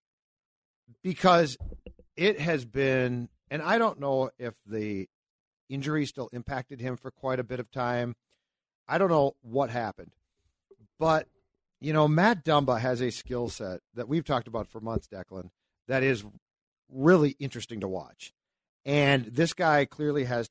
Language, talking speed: English, 150 wpm